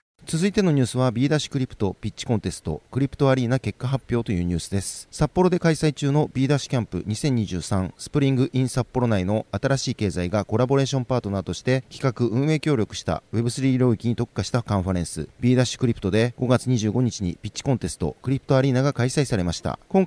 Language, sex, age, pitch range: Japanese, male, 40-59, 105-135 Hz